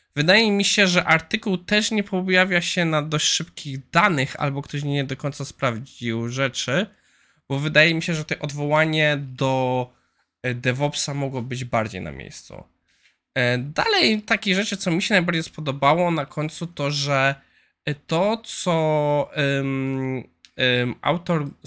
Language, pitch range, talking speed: Polish, 125-160 Hz, 135 wpm